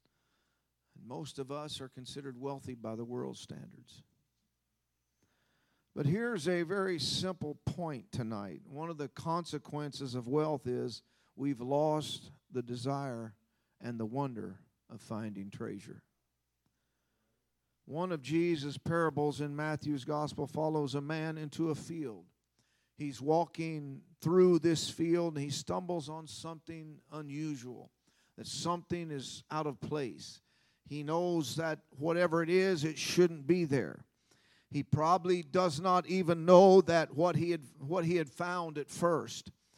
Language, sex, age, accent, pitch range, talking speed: English, male, 50-69, American, 135-170 Hz, 135 wpm